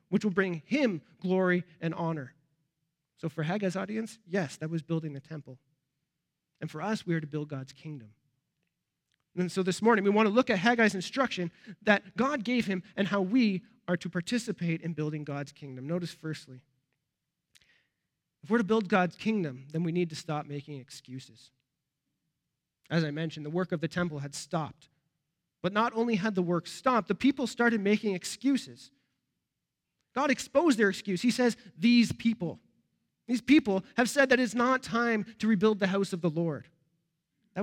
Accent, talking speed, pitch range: American, 180 wpm, 155-215 Hz